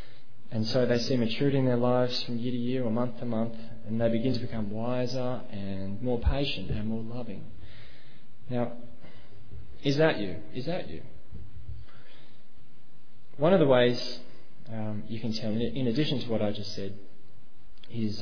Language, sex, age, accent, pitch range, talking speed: English, male, 20-39, Australian, 105-125 Hz, 170 wpm